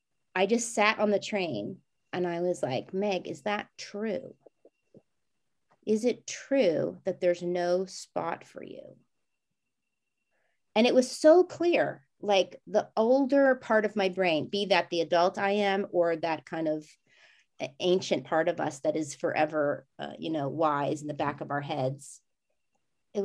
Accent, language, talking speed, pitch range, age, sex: American, English, 165 wpm, 175-255 Hz, 30-49, female